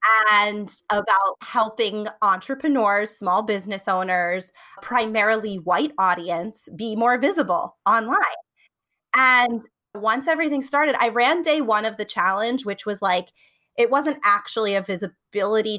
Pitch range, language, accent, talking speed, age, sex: 185-230 Hz, English, American, 125 wpm, 20-39, female